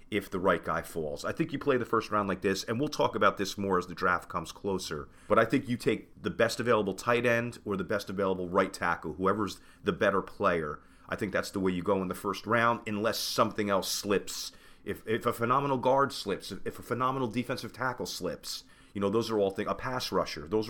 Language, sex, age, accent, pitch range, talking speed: English, male, 30-49, American, 90-110 Hz, 240 wpm